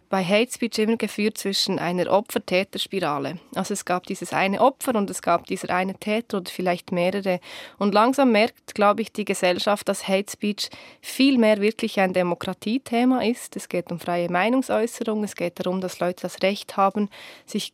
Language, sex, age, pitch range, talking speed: German, female, 20-39, 185-230 Hz, 175 wpm